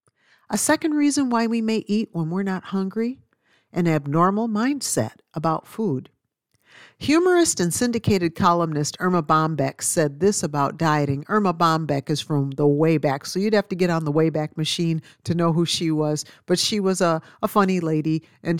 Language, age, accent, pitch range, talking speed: English, 50-69, American, 155-220 Hz, 175 wpm